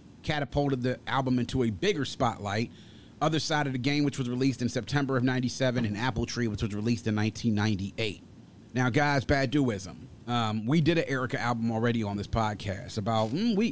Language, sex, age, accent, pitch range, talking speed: English, male, 30-49, American, 115-150 Hz, 190 wpm